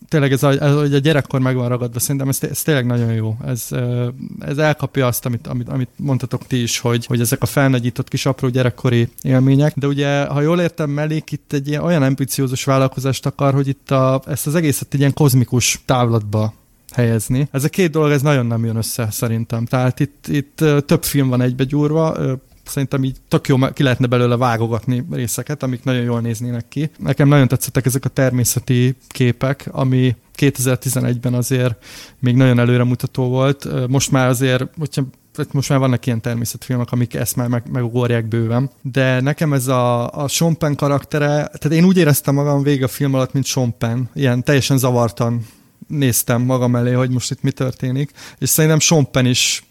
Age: 30-49